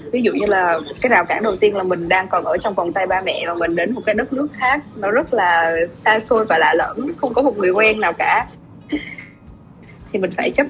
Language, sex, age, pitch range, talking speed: Vietnamese, female, 20-39, 195-265 Hz, 260 wpm